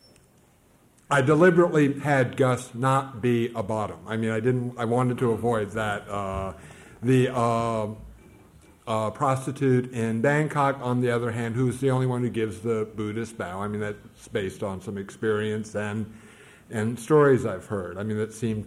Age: 50-69